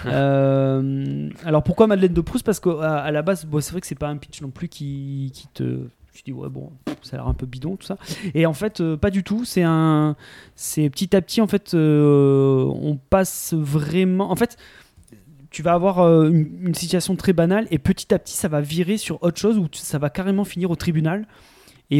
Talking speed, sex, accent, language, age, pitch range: 225 wpm, male, French, French, 20-39, 140-185 Hz